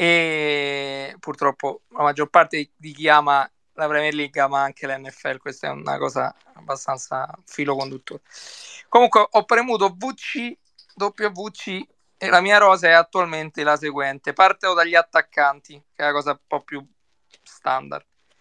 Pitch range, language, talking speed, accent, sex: 150-190 Hz, Italian, 150 wpm, native, male